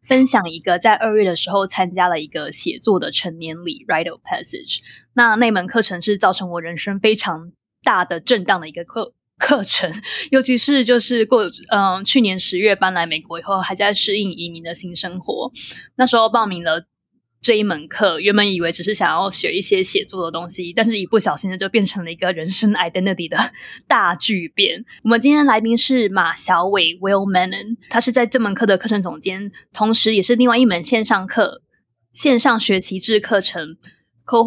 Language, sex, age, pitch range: English, female, 20-39, 185-235 Hz